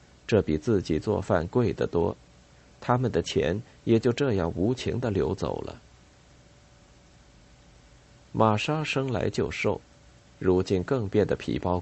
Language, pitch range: Chinese, 80-120 Hz